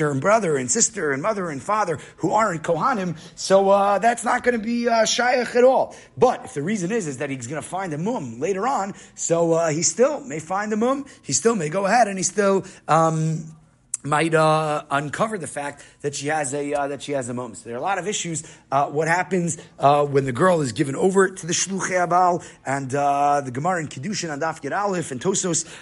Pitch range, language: 145-185 Hz, English